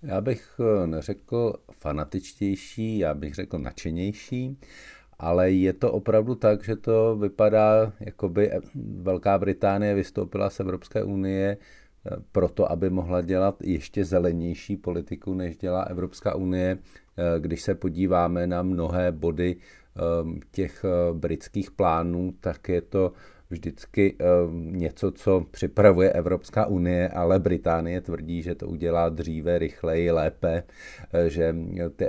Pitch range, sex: 85-105 Hz, male